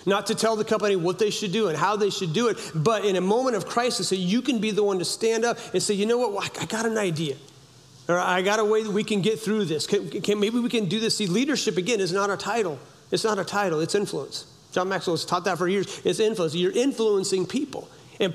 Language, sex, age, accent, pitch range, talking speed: English, male, 40-59, American, 180-225 Hz, 265 wpm